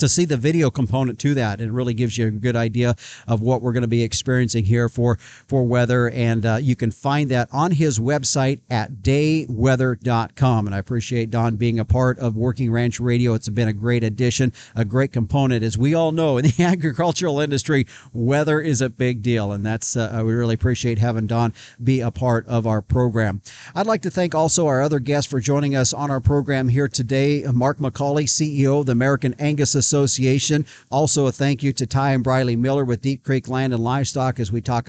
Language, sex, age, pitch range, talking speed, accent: English, male, 50-69, 120-140 Hz, 215 wpm, American